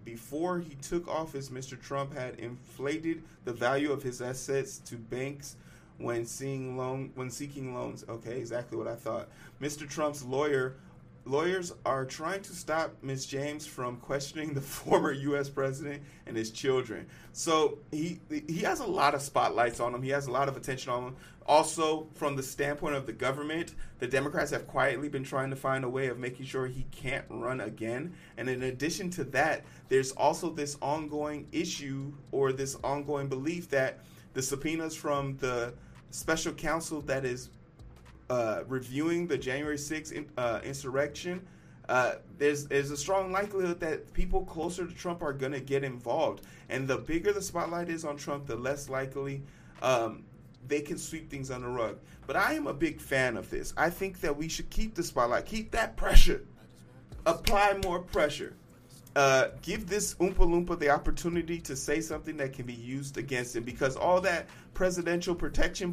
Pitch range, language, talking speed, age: 130-160 Hz, English, 175 wpm, 30-49